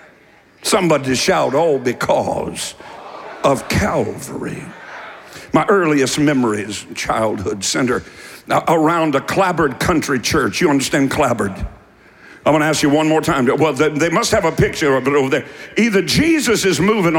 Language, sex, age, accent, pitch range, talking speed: English, male, 60-79, American, 150-200 Hz, 150 wpm